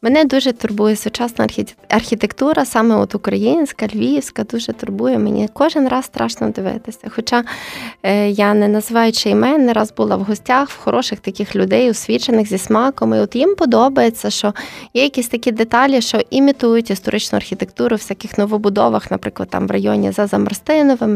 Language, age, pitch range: Ukrainian, 20-39, 210-255 Hz